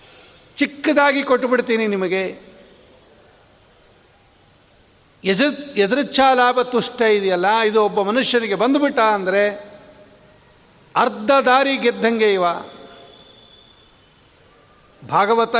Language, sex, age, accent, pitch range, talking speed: Kannada, male, 60-79, native, 180-250 Hz, 70 wpm